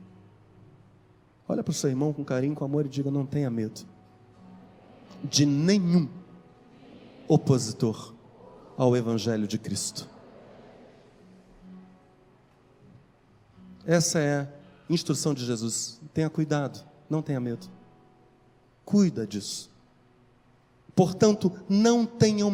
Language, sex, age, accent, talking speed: Portuguese, male, 40-59, Brazilian, 100 wpm